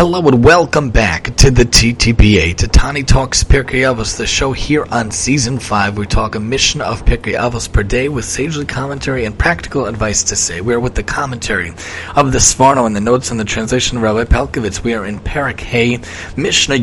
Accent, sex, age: American, male, 30-49